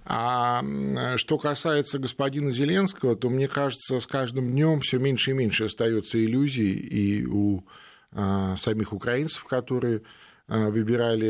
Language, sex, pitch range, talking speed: Russian, male, 100-125 Hz, 135 wpm